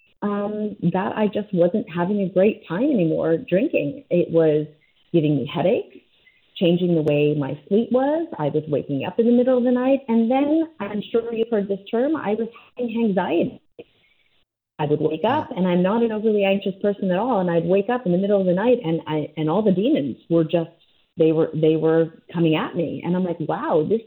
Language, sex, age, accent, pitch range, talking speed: English, female, 30-49, American, 165-235 Hz, 215 wpm